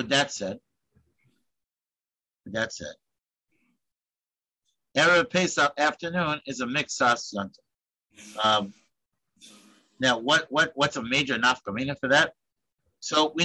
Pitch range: 125-170 Hz